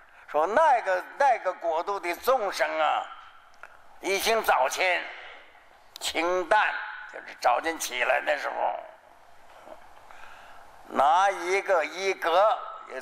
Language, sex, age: Chinese, male, 60-79